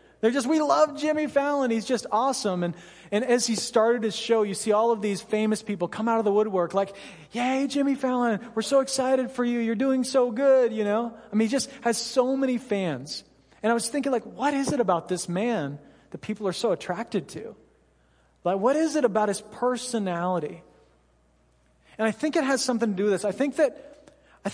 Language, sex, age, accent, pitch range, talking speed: English, male, 30-49, American, 190-255 Hz, 220 wpm